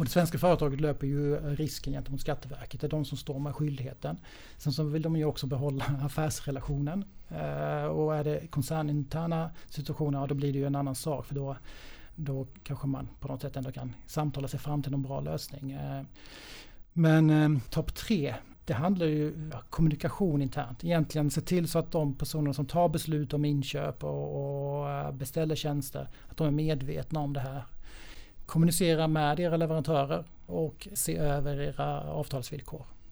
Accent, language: native, Swedish